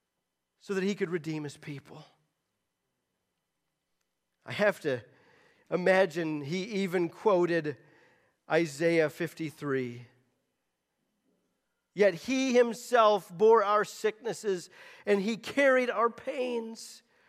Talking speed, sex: 95 wpm, male